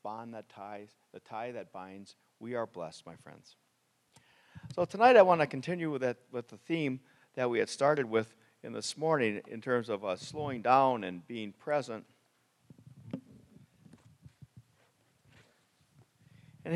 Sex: male